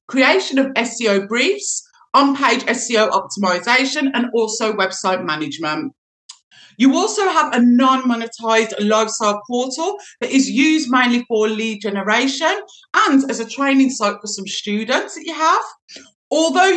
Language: English